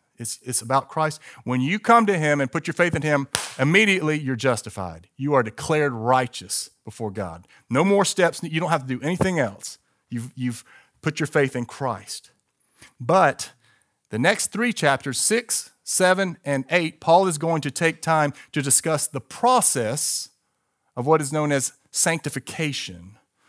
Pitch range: 125-160 Hz